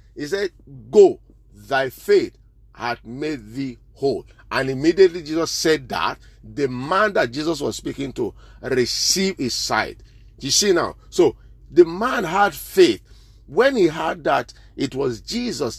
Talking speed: 150 wpm